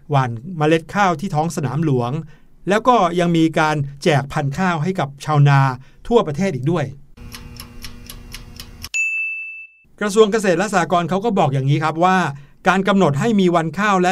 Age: 60-79